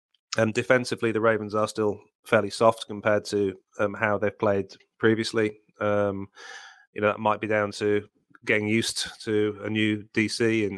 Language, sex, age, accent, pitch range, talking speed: English, male, 30-49, British, 100-105 Hz, 165 wpm